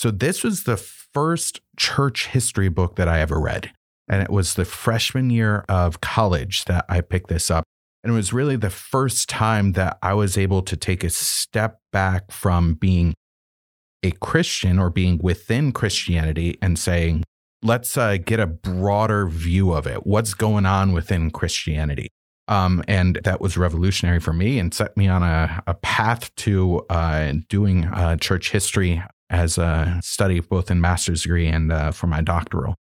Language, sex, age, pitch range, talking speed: English, male, 30-49, 85-110 Hz, 175 wpm